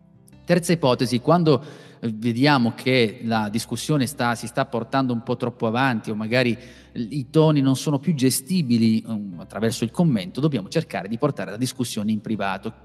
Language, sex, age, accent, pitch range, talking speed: Italian, male, 30-49, native, 115-145 Hz, 155 wpm